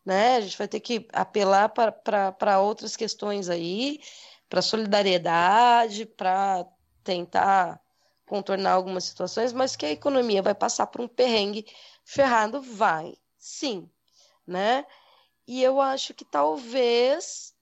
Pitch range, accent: 190-240 Hz, Brazilian